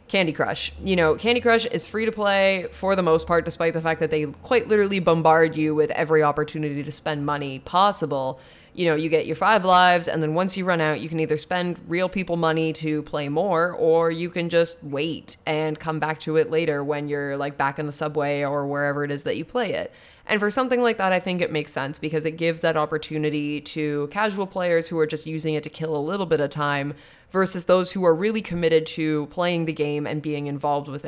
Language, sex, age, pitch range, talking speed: English, female, 20-39, 150-180 Hz, 235 wpm